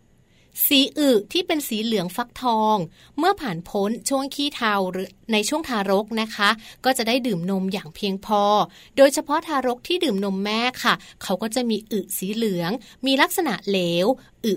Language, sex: Thai, female